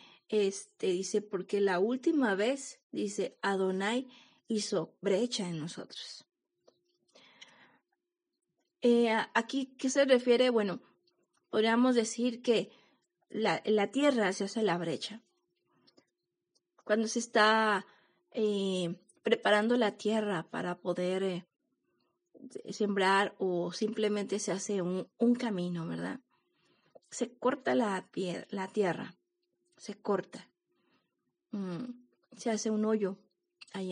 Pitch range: 195-250 Hz